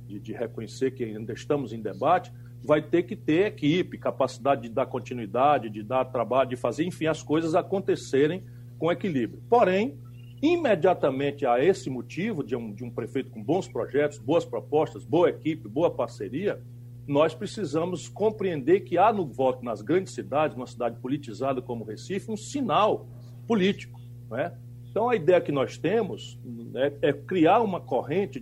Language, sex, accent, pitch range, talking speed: Portuguese, male, Brazilian, 120-180 Hz, 165 wpm